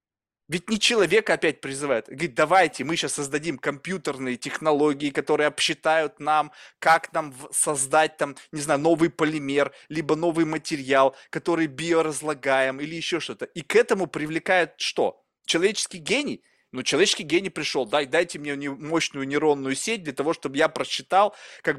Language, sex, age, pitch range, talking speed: Russian, male, 20-39, 145-195 Hz, 150 wpm